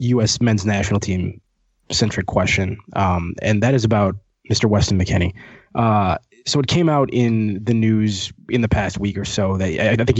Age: 20-39